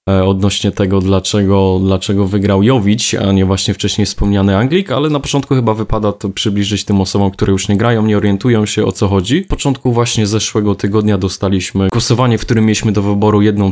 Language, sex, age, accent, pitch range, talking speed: Polish, male, 20-39, native, 100-115 Hz, 190 wpm